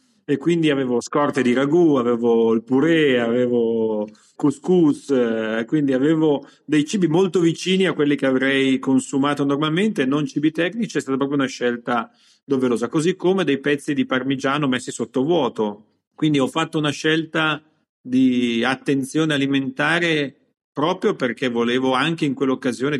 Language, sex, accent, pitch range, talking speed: Italian, male, native, 120-145 Hz, 145 wpm